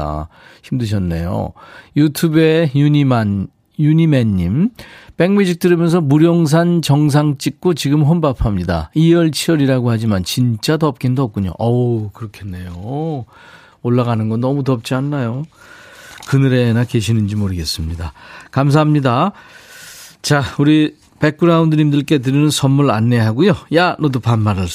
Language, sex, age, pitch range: Korean, male, 40-59, 120-165 Hz